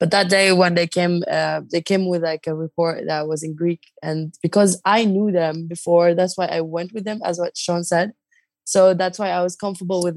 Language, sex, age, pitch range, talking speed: English, female, 20-39, 150-175 Hz, 235 wpm